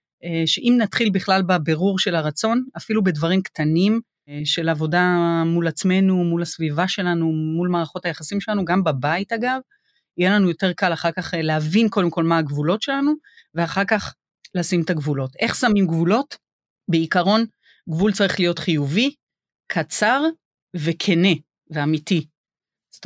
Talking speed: 135 wpm